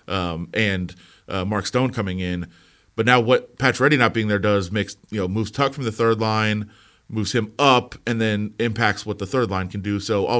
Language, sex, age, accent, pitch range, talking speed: English, male, 30-49, American, 100-120 Hz, 225 wpm